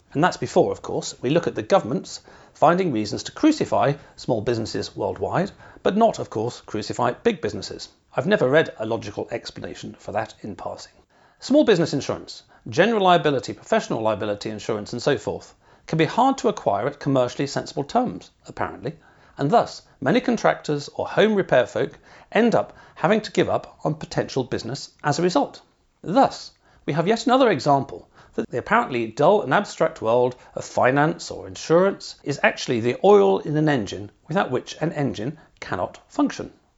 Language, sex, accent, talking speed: English, male, British, 170 wpm